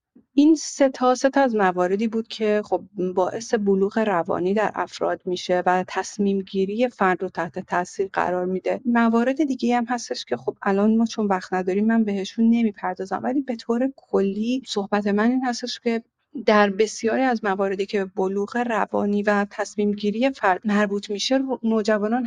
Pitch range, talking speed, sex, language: 190-225 Hz, 160 wpm, female, Persian